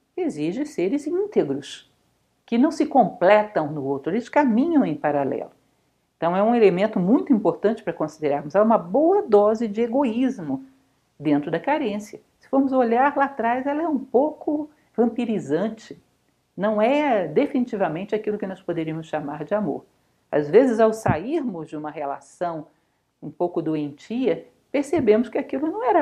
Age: 60-79